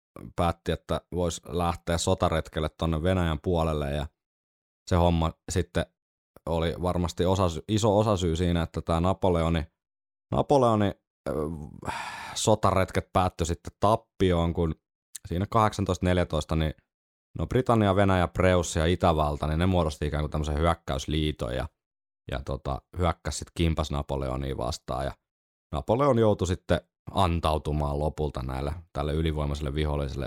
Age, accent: 20-39, native